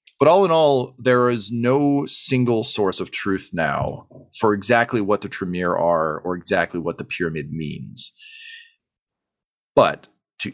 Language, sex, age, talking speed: English, male, 40-59, 150 wpm